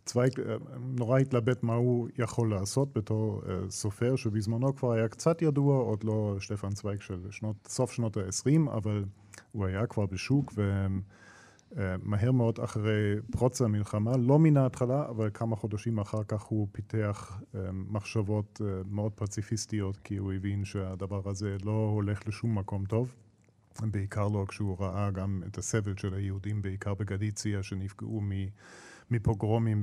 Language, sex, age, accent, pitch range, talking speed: Hebrew, male, 40-59, German, 100-115 Hz, 140 wpm